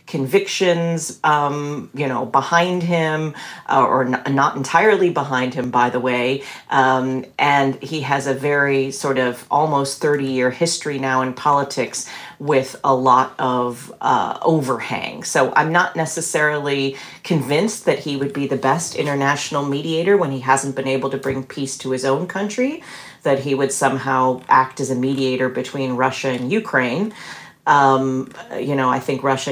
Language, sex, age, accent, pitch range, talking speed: English, female, 40-59, American, 130-170 Hz, 160 wpm